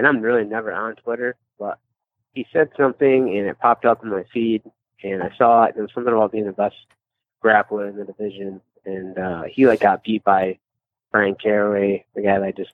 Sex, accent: male, American